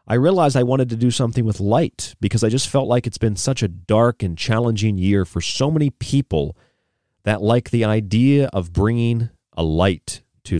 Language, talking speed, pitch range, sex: English, 200 wpm, 95-125 Hz, male